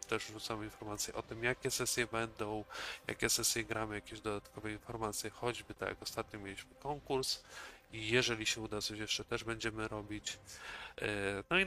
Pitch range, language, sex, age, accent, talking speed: 100-115 Hz, Polish, male, 20-39, native, 160 wpm